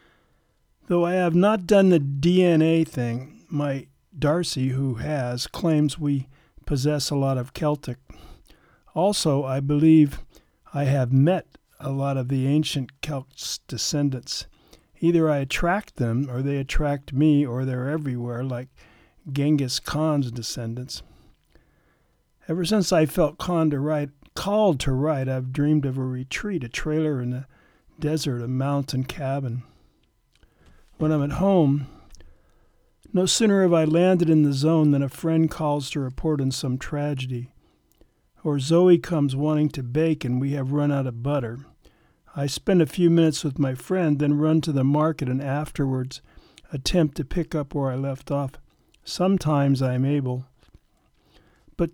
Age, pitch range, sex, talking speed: 50-69, 135-160 Hz, male, 150 wpm